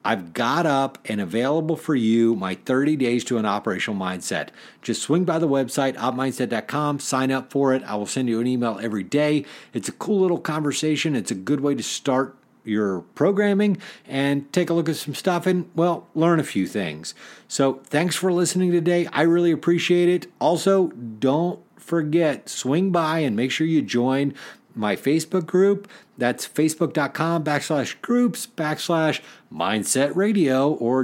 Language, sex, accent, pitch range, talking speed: English, male, American, 135-170 Hz, 170 wpm